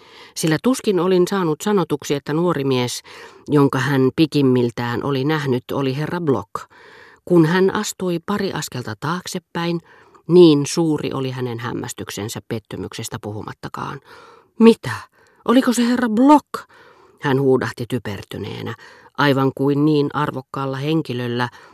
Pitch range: 120-170 Hz